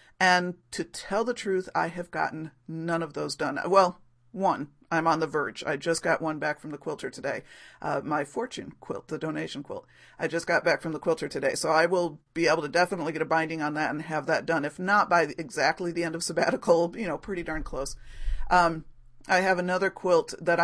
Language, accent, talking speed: English, American, 225 wpm